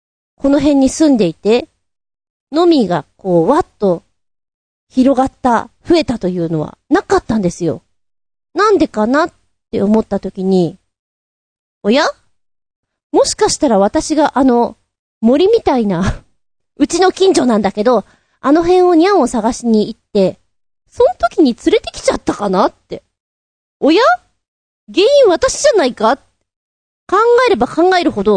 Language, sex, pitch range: Japanese, female, 205-340 Hz